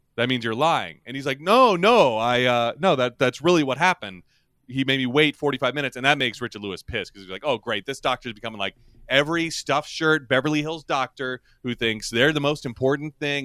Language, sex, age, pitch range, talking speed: English, male, 30-49, 110-150 Hz, 230 wpm